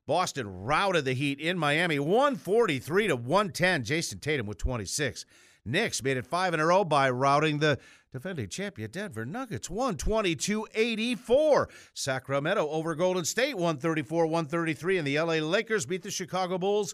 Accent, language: American, English